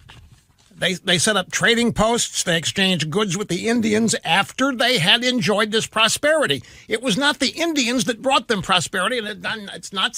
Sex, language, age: male, English, 60-79